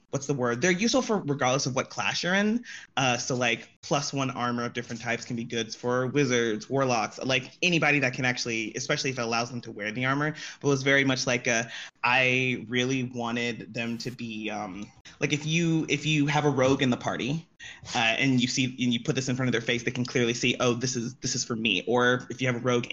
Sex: male